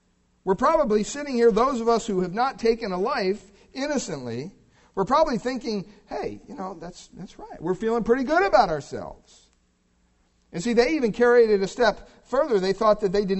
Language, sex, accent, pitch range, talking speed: English, male, American, 140-205 Hz, 195 wpm